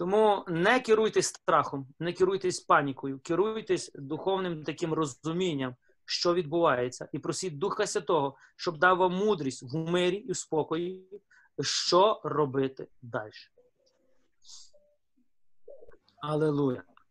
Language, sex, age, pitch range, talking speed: Ukrainian, male, 30-49, 145-185 Hz, 100 wpm